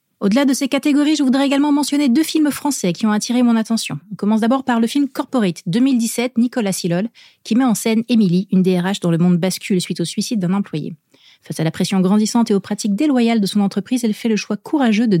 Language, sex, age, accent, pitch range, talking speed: French, female, 30-49, French, 190-250 Hz, 235 wpm